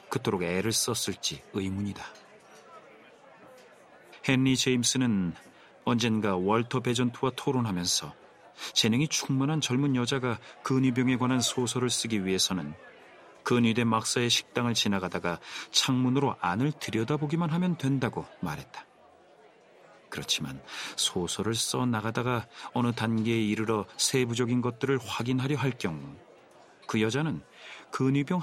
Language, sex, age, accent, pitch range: Korean, male, 40-59, native, 110-135 Hz